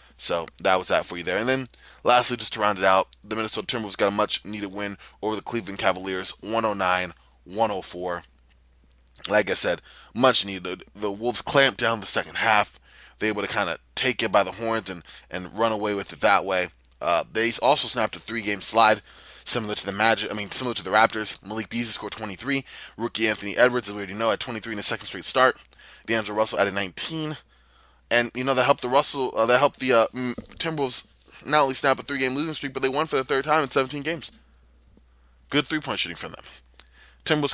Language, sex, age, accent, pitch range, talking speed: English, male, 20-39, American, 95-130 Hz, 215 wpm